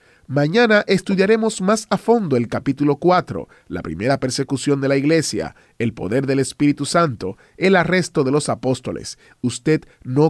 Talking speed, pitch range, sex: 150 wpm, 125-175 Hz, male